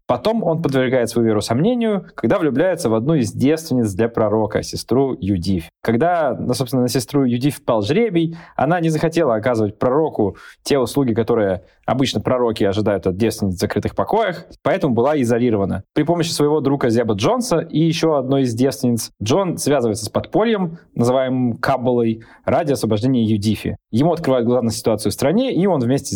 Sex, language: male, Russian